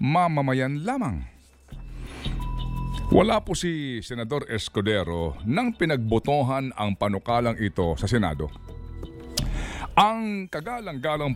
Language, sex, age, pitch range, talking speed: Filipino, male, 50-69, 95-155 Hz, 85 wpm